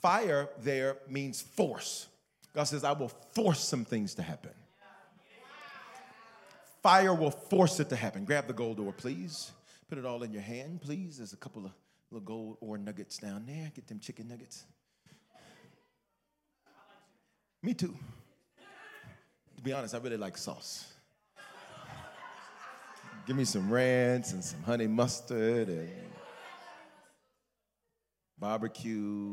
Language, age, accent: English, 40-59, American